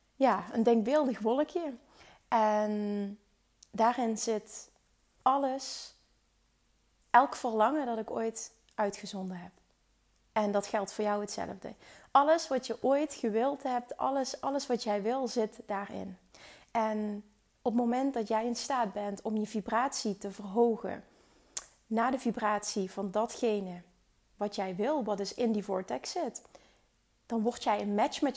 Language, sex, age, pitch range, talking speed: Dutch, female, 30-49, 210-245 Hz, 145 wpm